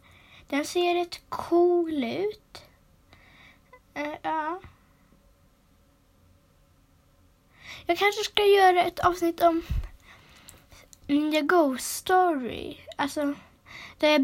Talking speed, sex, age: 90 wpm, female, 20-39